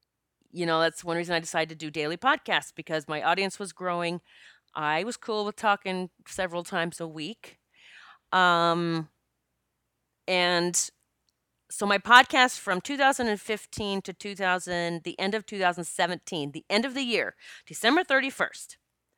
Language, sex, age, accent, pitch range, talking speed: English, female, 30-49, American, 165-220 Hz, 140 wpm